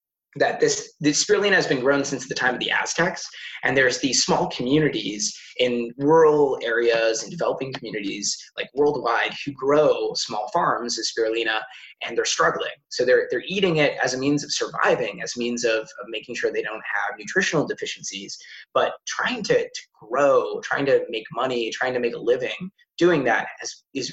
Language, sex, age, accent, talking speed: English, male, 20-39, American, 185 wpm